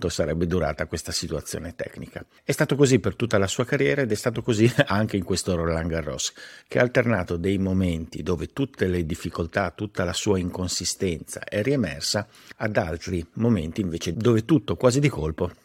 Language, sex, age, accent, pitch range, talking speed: Italian, male, 50-69, native, 90-110 Hz, 175 wpm